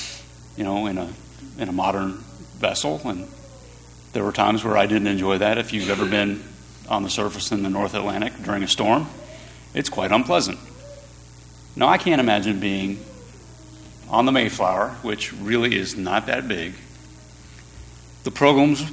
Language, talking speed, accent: English, 160 wpm, American